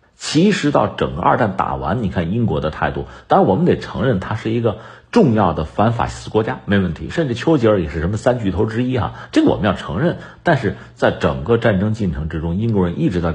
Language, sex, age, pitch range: Chinese, male, 50-69, 85-125 Hz